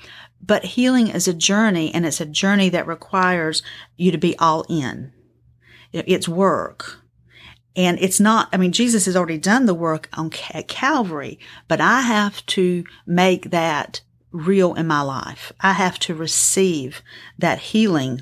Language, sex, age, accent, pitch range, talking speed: English, female, 40-59, American, 165-205 Hz, 155 wpm